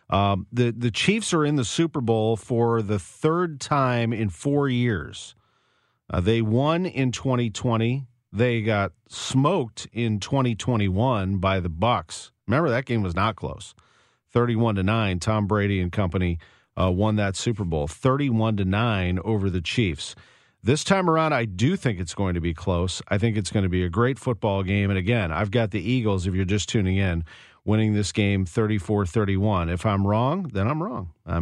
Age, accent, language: 40-59, American, English